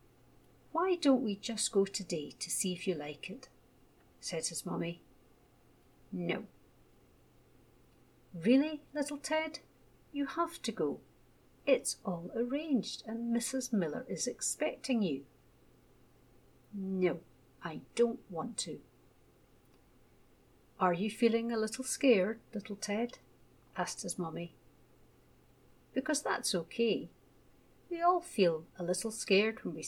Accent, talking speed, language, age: British, 120 wpm, English, 50-69